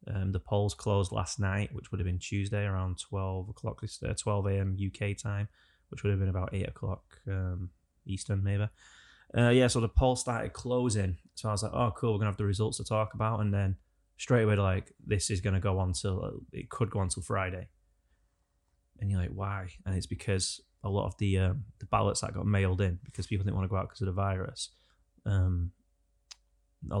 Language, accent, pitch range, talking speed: English, British, 95-105 Hz, 220 wpm